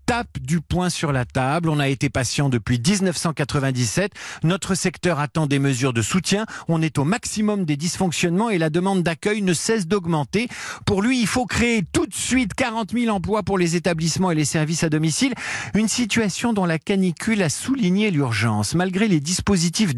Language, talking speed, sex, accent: French, 185 wpm, male, French